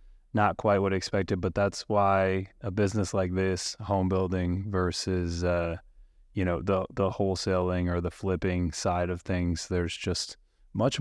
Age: 20-39